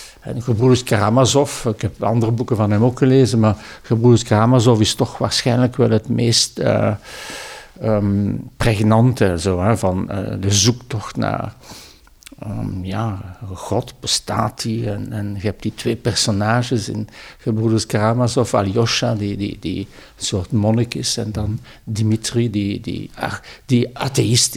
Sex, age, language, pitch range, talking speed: male, 60-79, Dutch, 110-130 Hz, 150 wpm